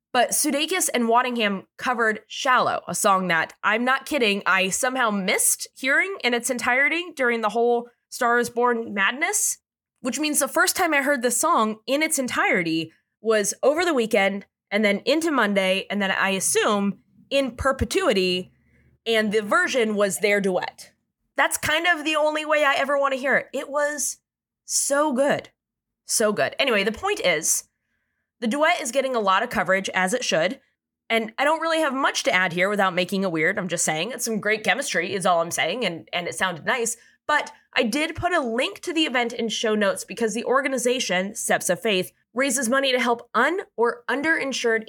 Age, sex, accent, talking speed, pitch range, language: 20-39, female, American, 195 wpm, 200-285 Hz, English